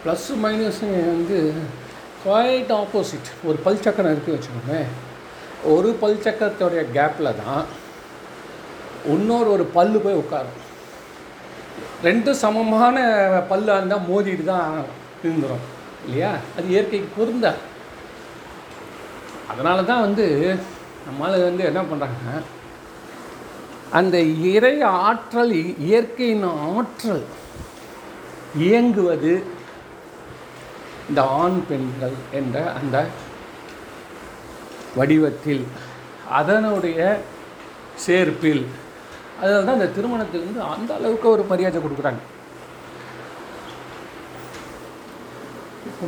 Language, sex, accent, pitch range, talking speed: Tamil, male, native, 155-210 Hz, 75 wpm